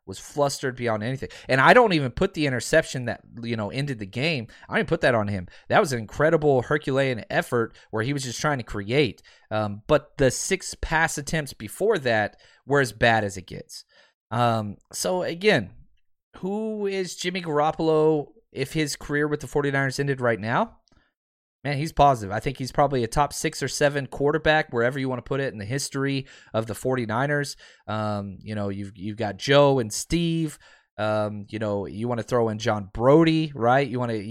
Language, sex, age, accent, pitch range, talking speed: English, male, 30-49, American, 110-155 Hz, 200 wpm